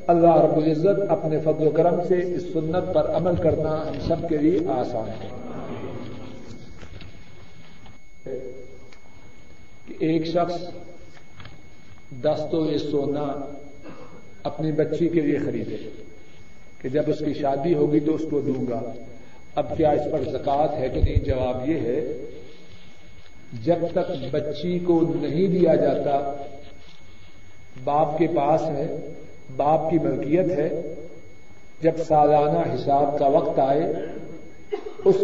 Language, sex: Urdu, male